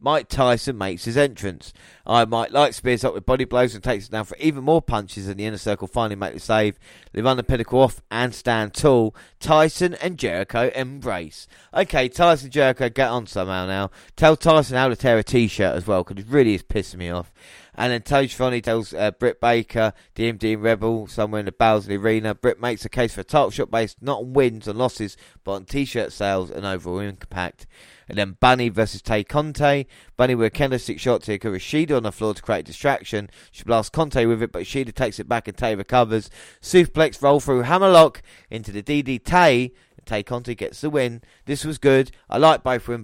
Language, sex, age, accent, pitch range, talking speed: English, male, 20-39, British, 105-130 Hz, 220 wpm